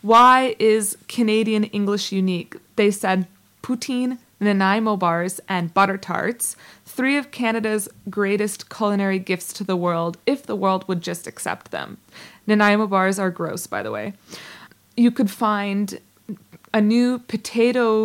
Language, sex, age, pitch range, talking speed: English, female, 20-39, 190-225 Hz, 140 wpm